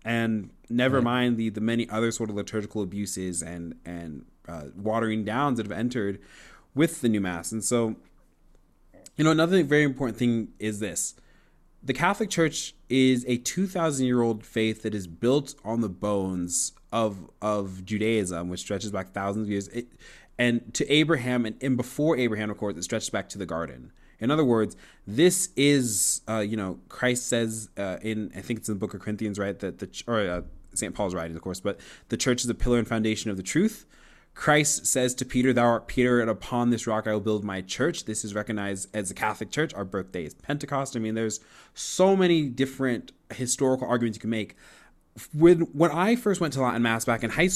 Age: 20-39